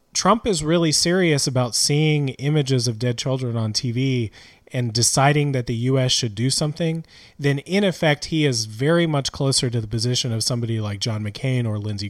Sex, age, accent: male, 30-49, American